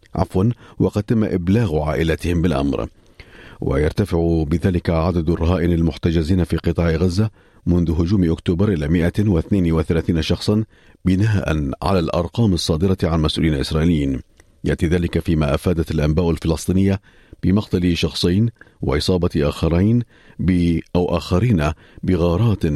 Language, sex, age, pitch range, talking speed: Arabic, male, 50-69, 80-95 Hz, 105 wpm